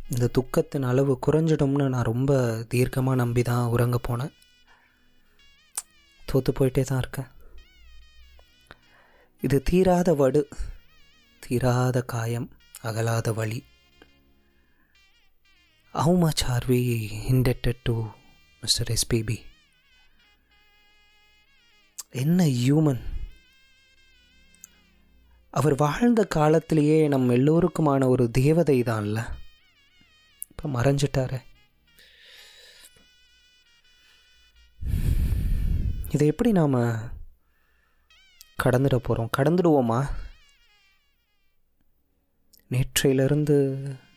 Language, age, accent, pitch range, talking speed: Tamil, 20-39, native, 105-145 Hz, 60 wpm